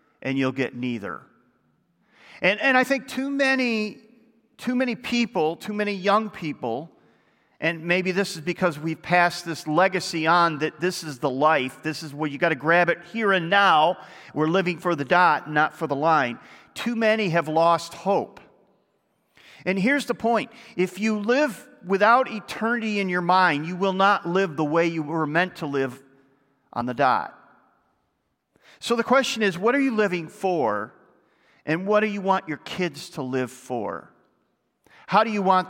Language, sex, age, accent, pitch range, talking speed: English, male, 40-59, American, 155-205 Hz, 180 wpm